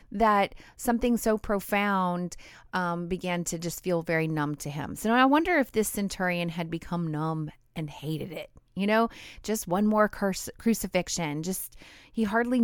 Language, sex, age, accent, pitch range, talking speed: English, female, 30-49, American, 170-215 Hz, 165 wpm